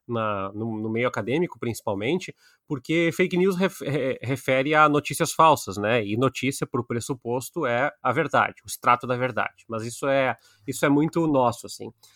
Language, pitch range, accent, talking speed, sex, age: Portuguese, 135-180 Hz, Brazilian, 155 wpm, male, 30-49